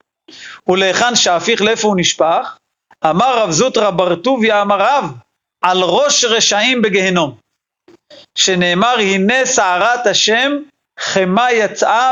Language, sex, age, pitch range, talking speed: Hebrew, male, 40-59, 185-235 Hz, 110 wpm